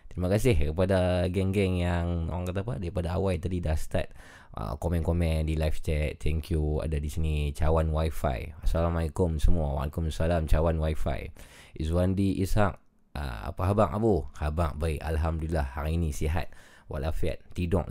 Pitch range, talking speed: 80-105 Hz, 145 wpm